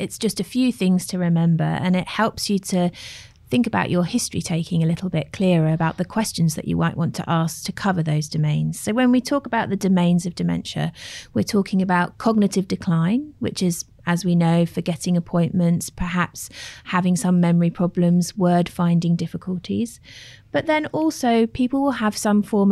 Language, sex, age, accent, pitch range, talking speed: English, female, 30-49, British, 165-205 Hz, 190 wpm